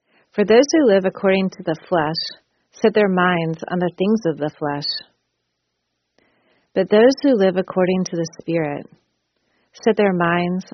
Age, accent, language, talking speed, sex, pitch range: 40-59, American, English, 155 wpm, female, 155-195 Hz